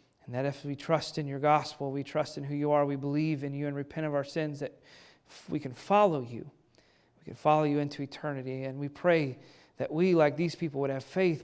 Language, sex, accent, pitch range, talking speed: English, male, American, 140-180 Hz, 230 wpm